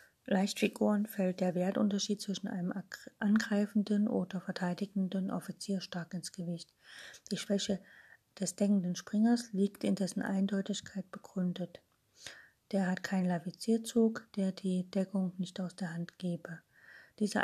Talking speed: 125 wpm